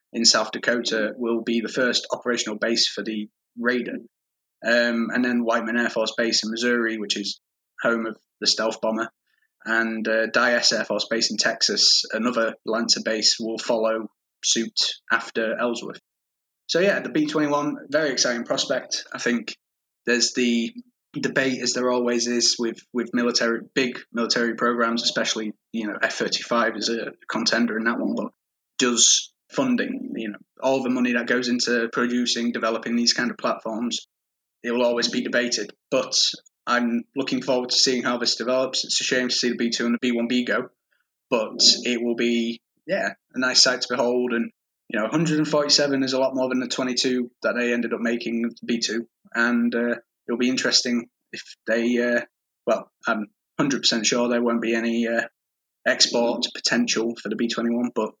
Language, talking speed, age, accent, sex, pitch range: English, 180 wpm, 20-39, British, male, 115-125 Hz